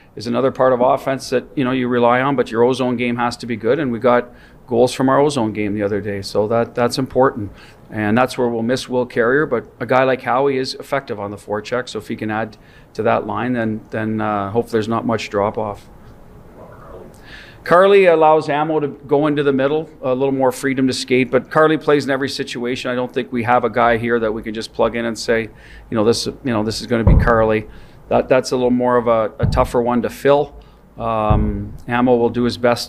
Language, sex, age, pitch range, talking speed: English, male, 40-59, 115-130 Hz, 245 wpm